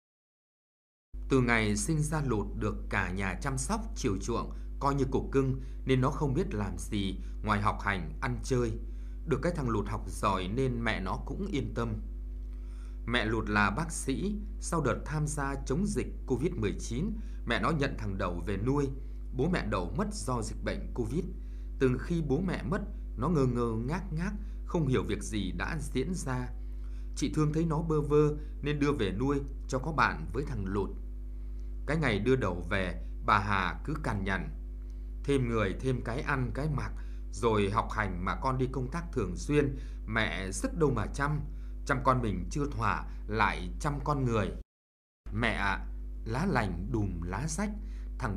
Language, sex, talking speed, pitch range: Vietnamese, male, 185 wpm, 95-140 Hz